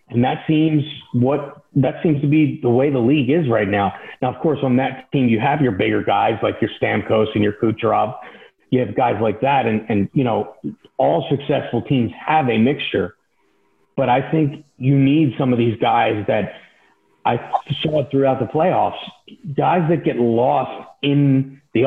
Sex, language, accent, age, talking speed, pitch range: male, English, American, 40-59, 185 wpm, 110-140 Hz